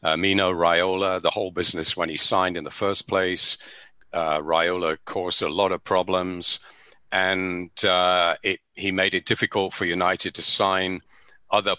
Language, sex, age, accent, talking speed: English, male, 50-69, British, 165 wpm